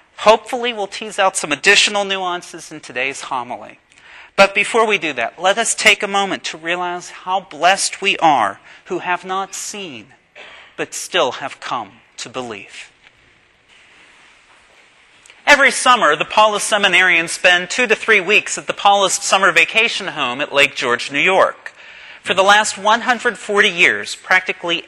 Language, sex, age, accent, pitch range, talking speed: English, male, 40-59, American, 155-210 Hz, 150 wpm